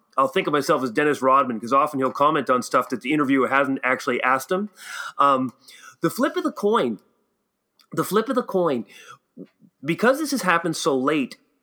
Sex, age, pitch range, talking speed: male, 30-49, 145-195 Hz, 190 wpm